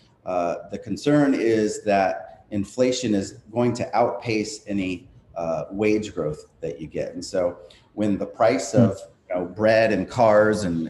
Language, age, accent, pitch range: English, 40-59, American, 90-110 Hz